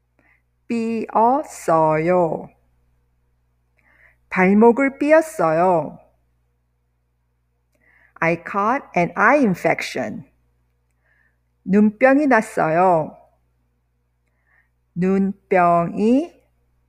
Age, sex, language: 50-69, female, English